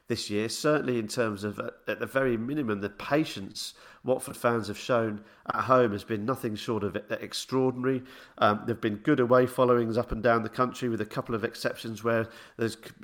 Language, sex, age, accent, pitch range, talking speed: English, male, 40-59, British, 110-145 Hz, 205 wpm